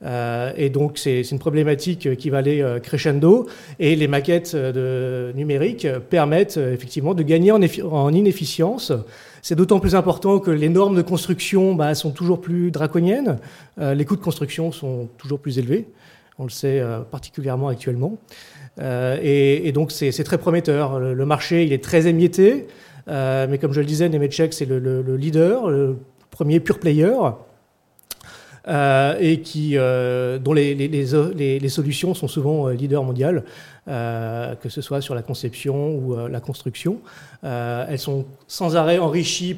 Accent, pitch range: French, 130-160 Hz